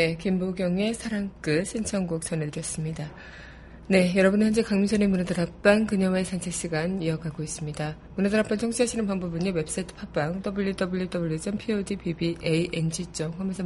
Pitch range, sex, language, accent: 170-200 Hz, female, Korean, native